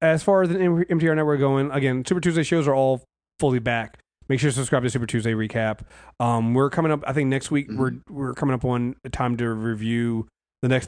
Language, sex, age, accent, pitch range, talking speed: English, male, 30-49, American, 110-140 Hz, 230 wpm